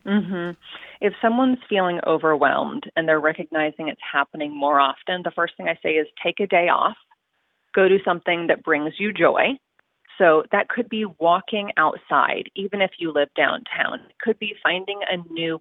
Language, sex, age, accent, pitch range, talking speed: English, female, 30-49, American, 165-210 Hz, 175 wpm